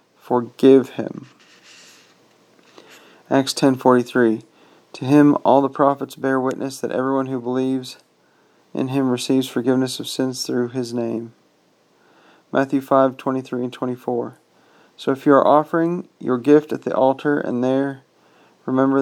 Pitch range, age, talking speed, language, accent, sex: 125-140 Hz, 40-59, 125 wpm, English, American, male